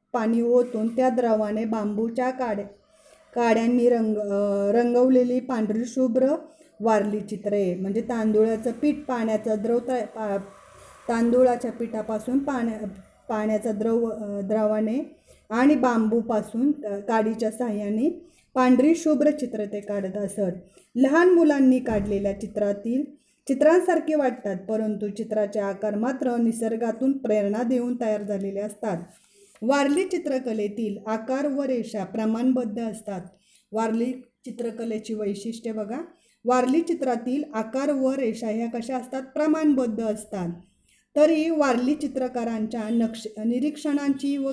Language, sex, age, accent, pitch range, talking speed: Marathi, female, 20-39, native, 215-260 Hz, 100 wpm